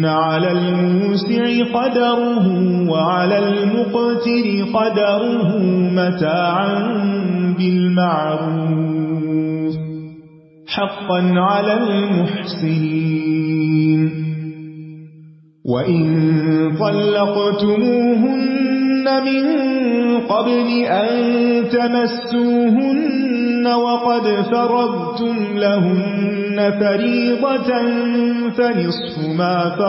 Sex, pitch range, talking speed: male, 160-235 Hz, 45 wpm